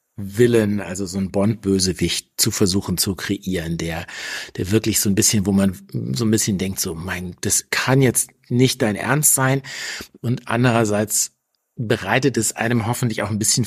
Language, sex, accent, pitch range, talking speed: German, male, German, 100-125 Hz, 170 wpm